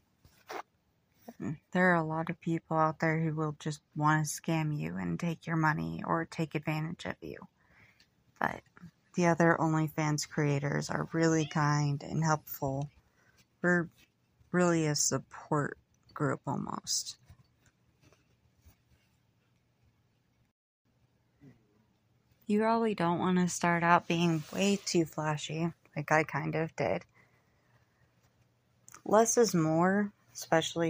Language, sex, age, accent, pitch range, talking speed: English, female, 30-49, American, 150-170 Hz, 115 wpm